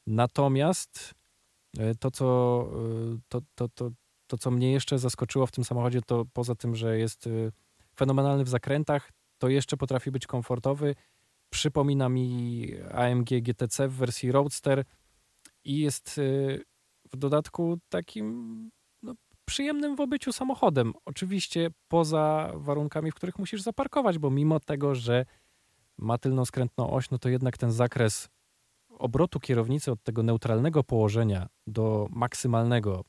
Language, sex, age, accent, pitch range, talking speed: Polish, male, 20-39, native, 115-140 Hz, 120 wpm